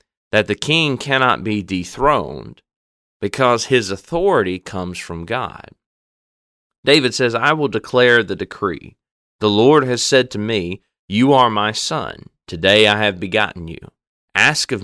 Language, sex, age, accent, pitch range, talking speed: English, male, 30-49, American, 95-125 Hz, 145 wpm